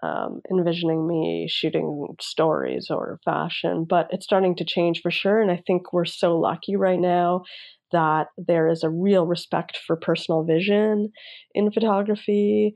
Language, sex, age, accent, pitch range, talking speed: English, female, 20-39, American, 165-190 Hz, 150 wpm